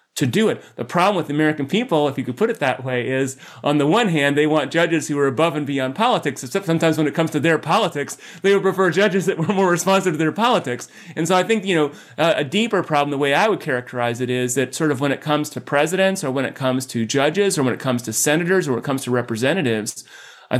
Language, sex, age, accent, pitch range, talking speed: English, male, 30-49, American, 130-160 Hz, 270 wpm